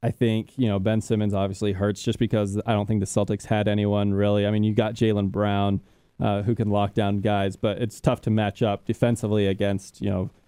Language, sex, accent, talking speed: English, male, American, 230 wpm